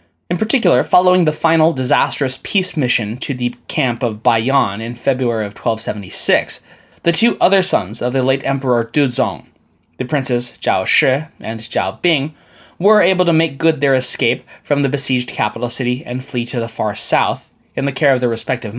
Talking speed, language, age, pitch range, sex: 180 wpm, English, 20-39, 120-165 Hz, male